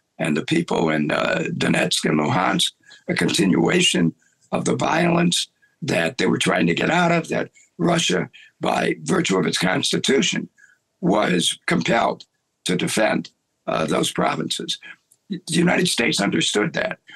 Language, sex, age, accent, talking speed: English, male, 60-79, American, 140 wpm